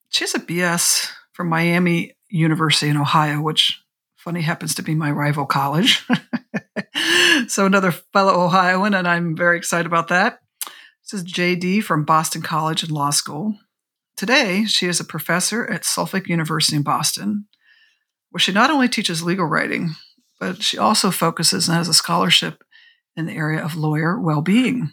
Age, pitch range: 50-69, 160-210 Hz